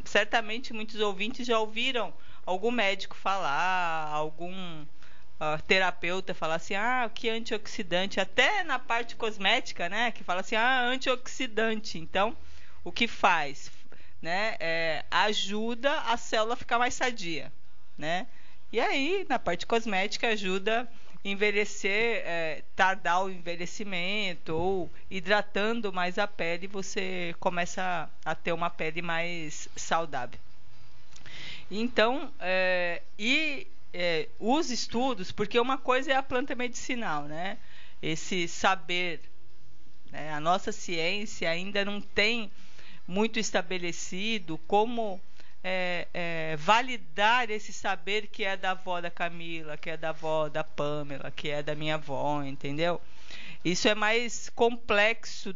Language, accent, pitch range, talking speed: Portuguese, Brazilian, 170-230 Hz, 125 wpm